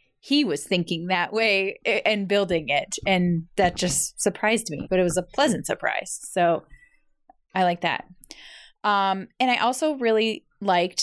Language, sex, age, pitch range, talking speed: English, female, 20-39, 175-205 Hz, 160 wpm